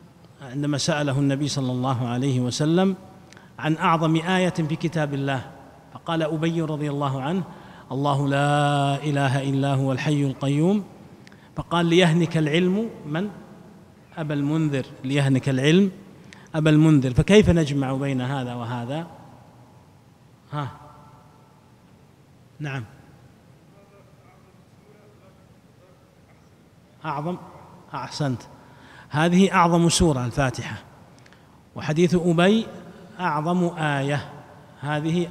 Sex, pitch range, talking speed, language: male, 140-170 Hz, 90 wpm, Arabic